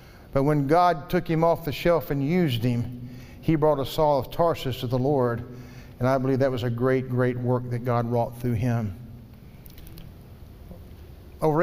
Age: 50-69